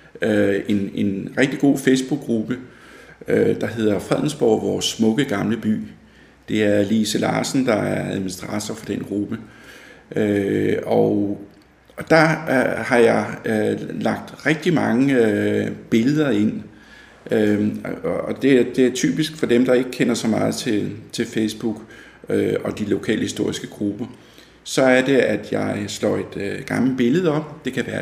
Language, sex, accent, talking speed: Danish, male, native, 140 wpm